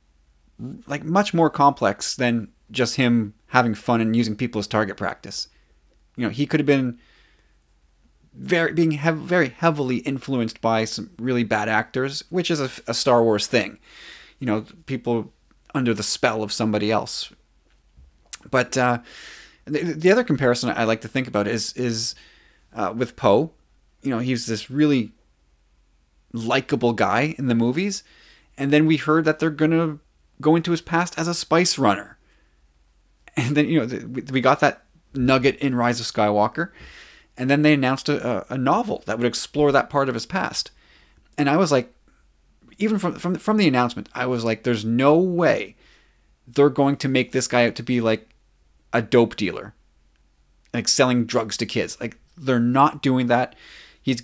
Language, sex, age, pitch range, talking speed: English, male, 30-49, 110-145 Hz, 175 wpm